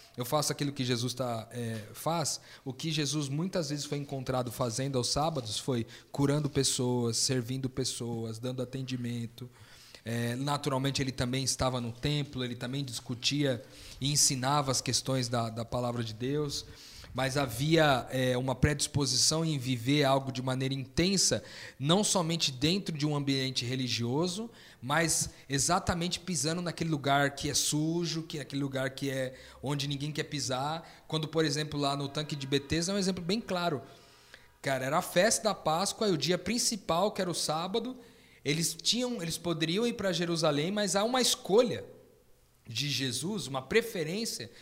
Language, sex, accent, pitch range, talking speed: Portuguese, male, Brazilian, 130-170 Hz, 165 wpm